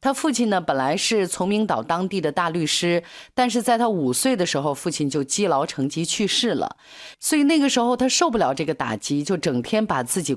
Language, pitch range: Chinese, 145-245 Hz